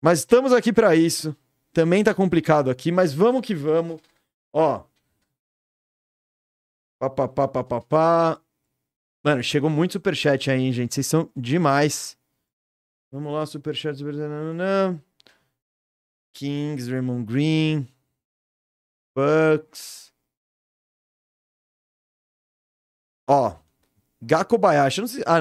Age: 30-49